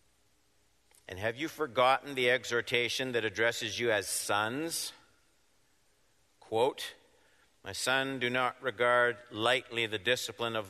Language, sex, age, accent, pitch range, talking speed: English, male, 50-69, American, 105-130 Hz, 120 wpm